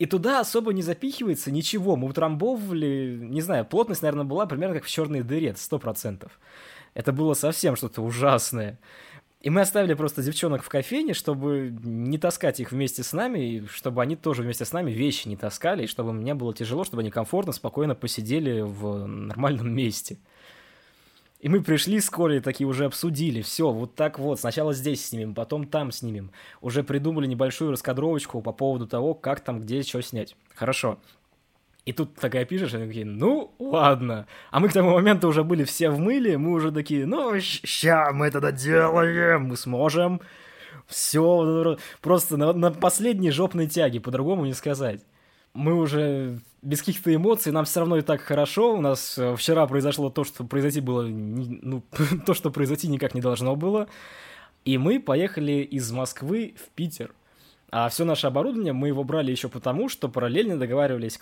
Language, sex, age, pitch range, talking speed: Russian, male, 20-39, 125-165 Hz, 175 wpm